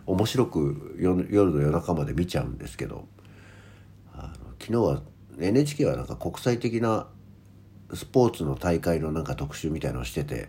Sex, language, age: male, Japanese, 60-79